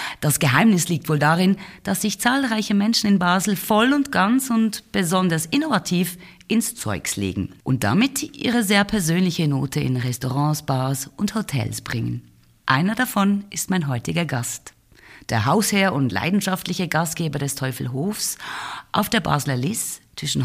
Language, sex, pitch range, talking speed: German, female, 140-205 Hz, 145 wpm